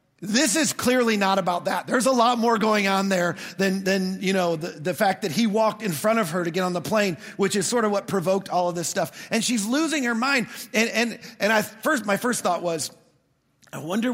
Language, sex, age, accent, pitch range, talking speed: English, male, 40-59, American, 180-240 Hz, 245 wpm